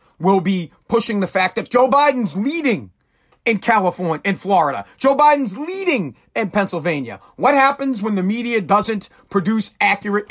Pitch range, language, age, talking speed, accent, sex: 185-230 Hz, English, 40-59, 150 wpm, American, male